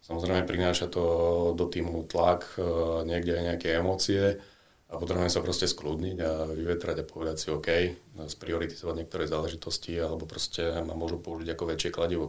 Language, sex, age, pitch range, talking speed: Slovak, male, 40-59, 85-90 Hz, 155 wpm